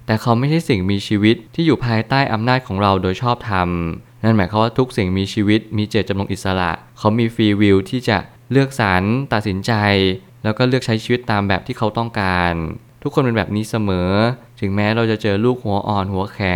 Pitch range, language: 100-120 Hz, Thai